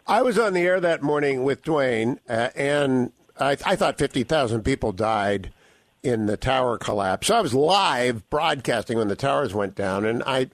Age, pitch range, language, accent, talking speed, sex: 50-69, 130-170 Hz, English, American, 195 wpm, male